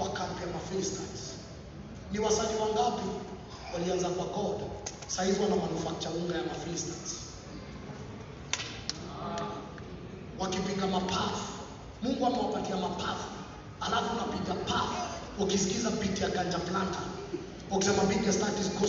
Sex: male